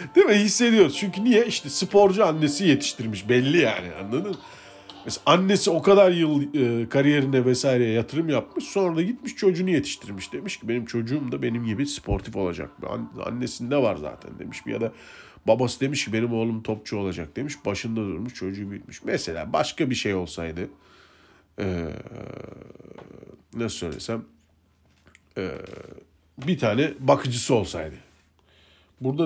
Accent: native